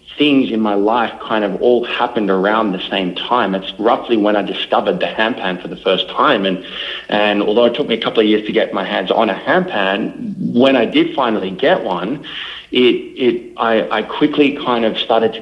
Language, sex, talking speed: English, male, 215 wpm